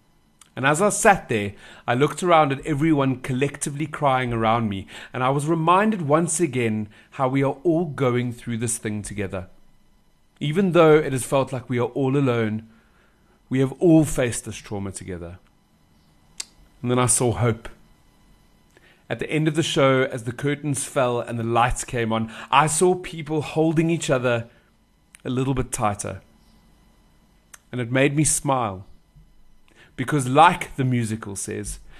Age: 30-49